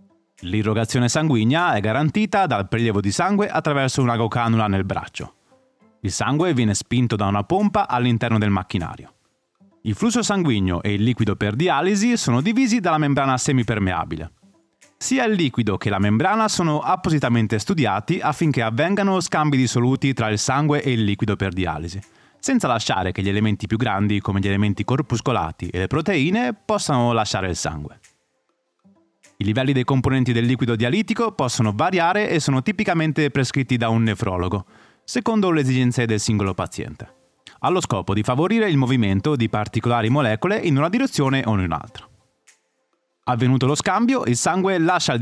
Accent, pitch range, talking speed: native, 105-170 Hz, 160 wpm